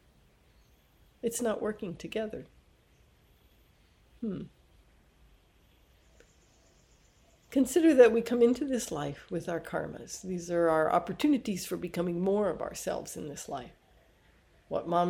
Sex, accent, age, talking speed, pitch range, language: female, American, 60-79, 115 wpm, 165-225 Hz, English